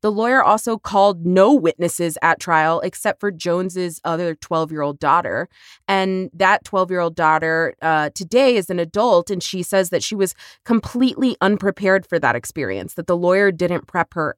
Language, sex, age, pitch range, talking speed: English, female, 20-39, 165-200 Hz, 185 wpm